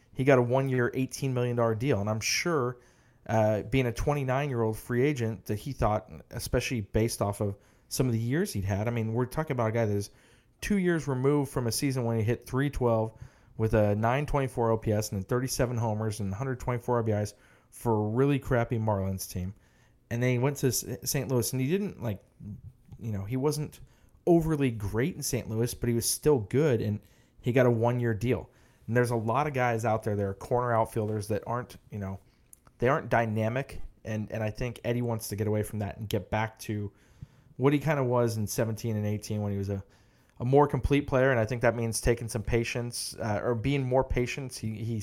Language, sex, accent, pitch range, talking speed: English, male, American, 110-125 Hz, 215 wpm